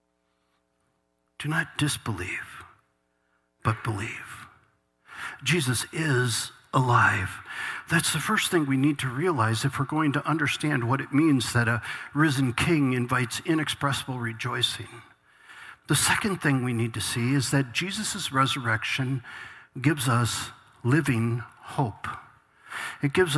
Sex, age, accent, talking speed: male, 50-69, American, 120 wpm